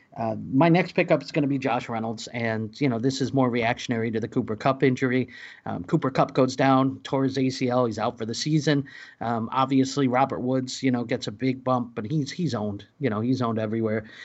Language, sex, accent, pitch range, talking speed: English, male, American, 125-145 Hz, 225 wpm